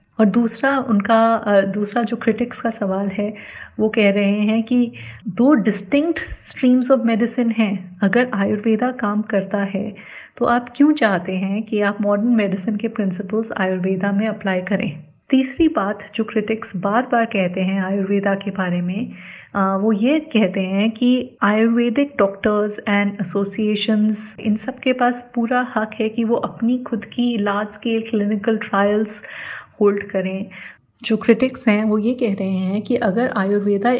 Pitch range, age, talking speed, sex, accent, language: 200-240 Hz, 30-49, 155 wpm, female, native, Hindi